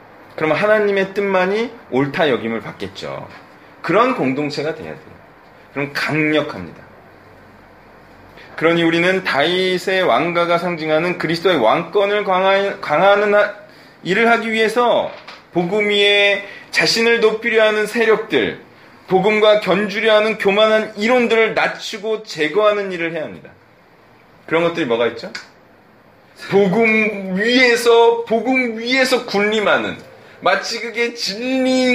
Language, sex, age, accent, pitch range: Korean, male, 30-49, native, 155-215 Hz